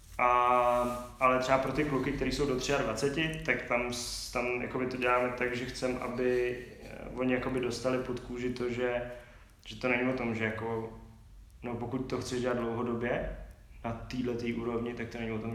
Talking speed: 185 wpm